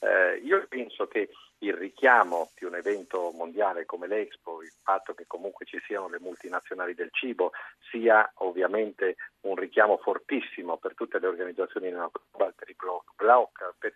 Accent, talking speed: native, 140 wpm